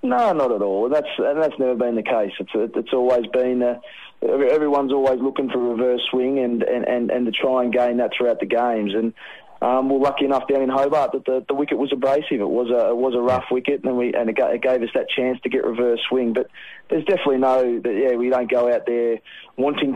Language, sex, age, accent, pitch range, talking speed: English, male, 20-39, Australian, 120-130 Hz, 250 wpm